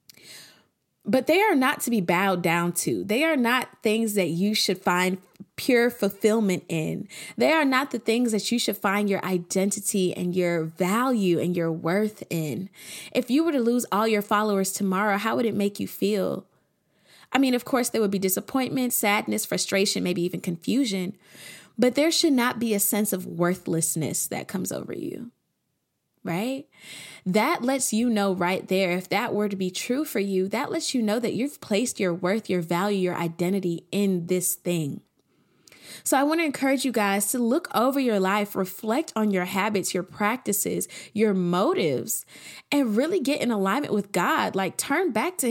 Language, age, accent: English, 20-39, American